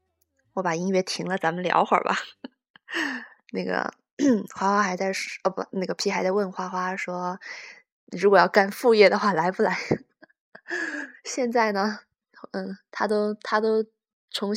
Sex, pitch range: female, 185-220 Hz